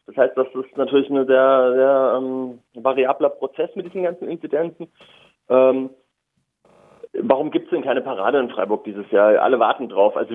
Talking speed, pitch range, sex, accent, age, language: 180 wpm, 120-135 Hz, male, German, 30-49, German